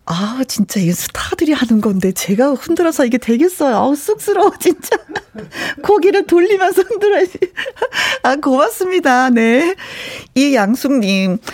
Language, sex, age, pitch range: Korean, female, 40-59, 190-320 Hz